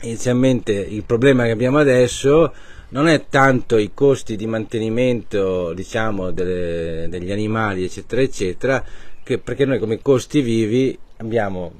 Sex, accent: male, native